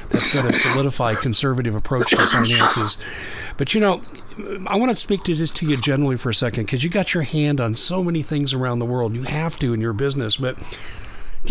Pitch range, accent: 125-155 Hz, American